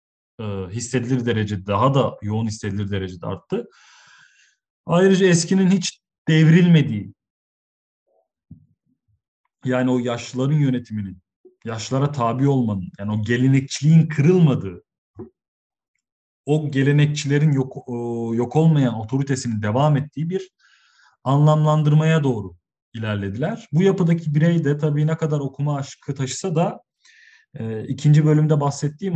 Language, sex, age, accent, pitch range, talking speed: Turkish, male, 40-59, native, 115-150 Hz, 105 wpm